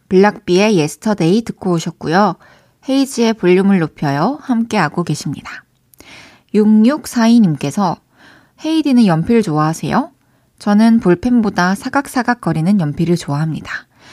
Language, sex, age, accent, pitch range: Korean, female, 20-39, native, 180-250 Hz